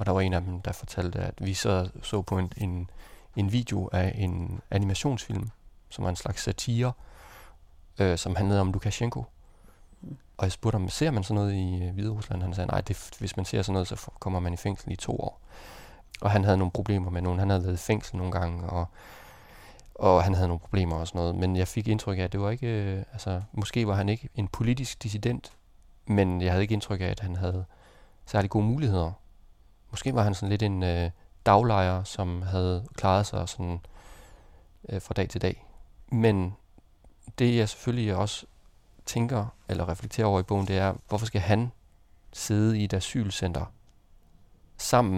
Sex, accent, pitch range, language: male, native, 90-110 Hz, Danish